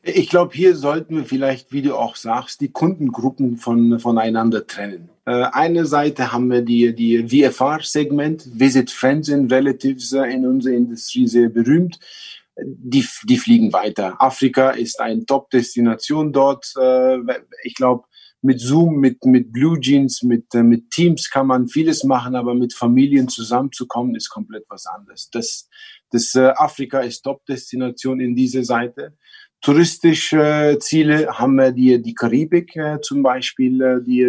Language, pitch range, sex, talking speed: German, 125-155 Hz, male, 150 wpm